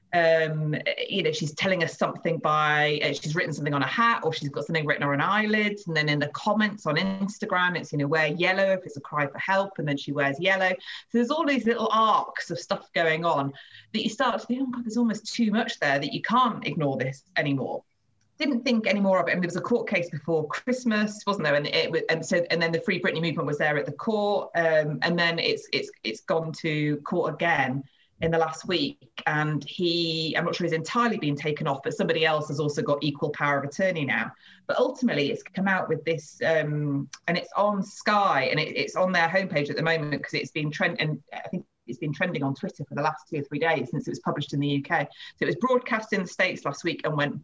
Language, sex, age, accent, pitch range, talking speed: English, female, 30-49, British, 150-200 Hz, 250 wpm